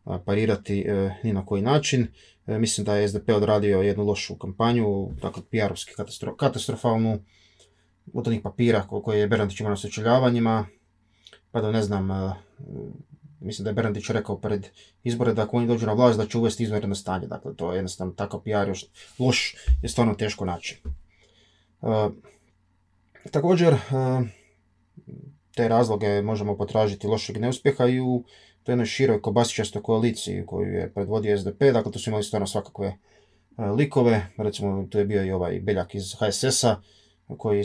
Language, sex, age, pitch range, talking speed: Croatian, male, 20-39, 100-115 Hz, 160 wpm